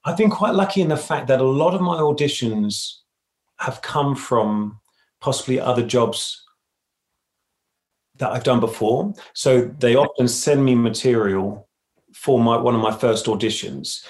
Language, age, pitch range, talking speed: English, 30-49, 105-130 Hz, 155 wpm